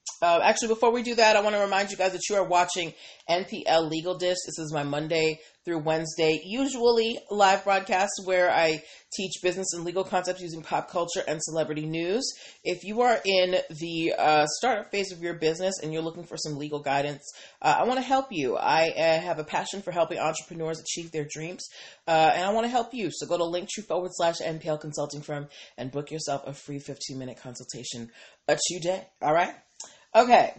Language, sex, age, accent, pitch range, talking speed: English, female, 30-49, American, 160-225 Hz, 210 wpm